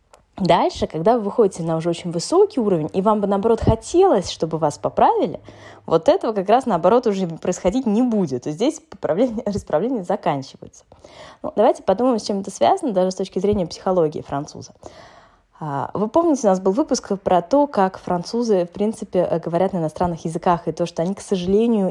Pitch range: 170-220 Hz